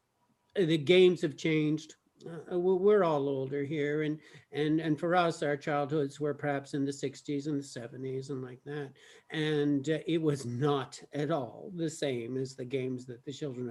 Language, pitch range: English, 150-225 Hz